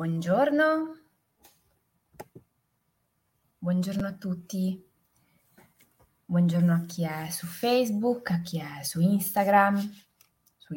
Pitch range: 170-205 Hz